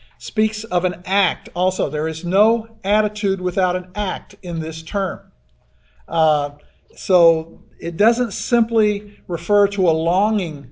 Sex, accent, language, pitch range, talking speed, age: male, American, English, 160-205 Hz, 135 wpm, 50-69